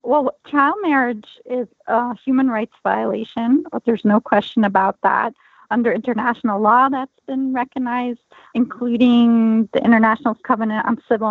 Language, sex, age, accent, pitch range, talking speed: English, female, 40-59, American, 220-260 Hz, 140 wpm